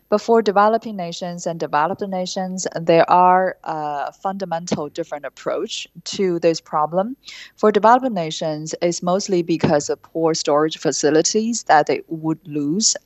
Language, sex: English, female